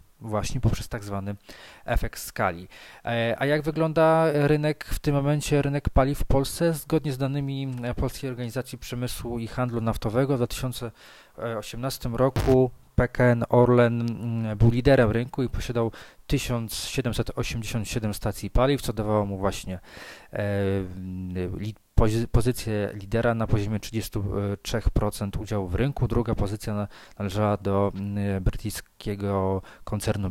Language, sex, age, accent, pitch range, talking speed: Polish, male, 20-39, native, 105-125 Hz, 115 wpm